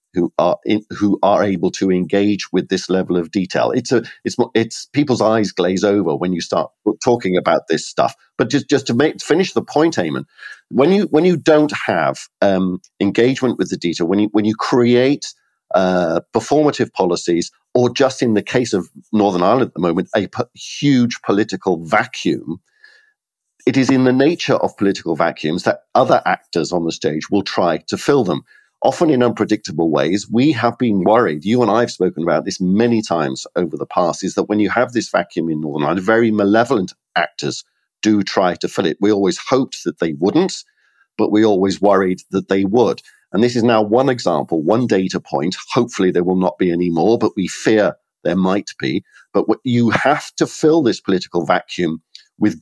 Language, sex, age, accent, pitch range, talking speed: English, male, 50-69, British, 95-120 Hz, 195 wpm